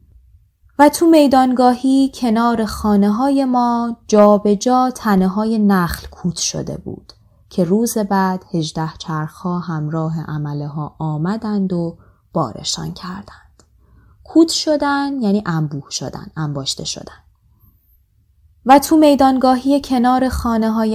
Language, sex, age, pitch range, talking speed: Persian, female, 20-39, 155-240 Hz, 115 wpm